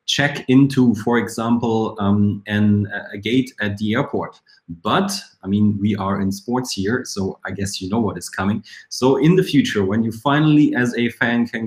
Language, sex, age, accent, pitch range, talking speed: English, male, 20-39, German, 105-135 Hz, 195 wpm